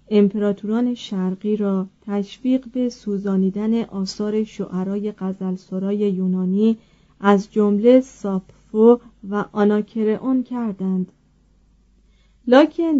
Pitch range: 190-235 Hz